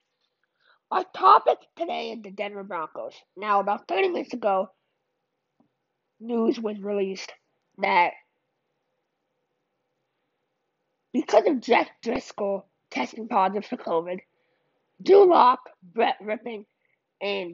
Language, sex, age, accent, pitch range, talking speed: English, female, 20-39, American, 195-230 Hz, 95 wpm